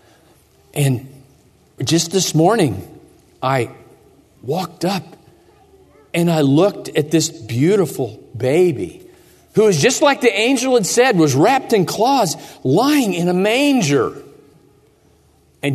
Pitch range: 140-195 Hz